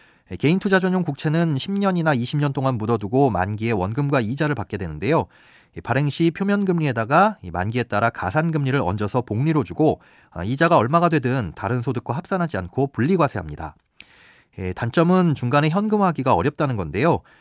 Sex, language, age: male, Korean, 30-49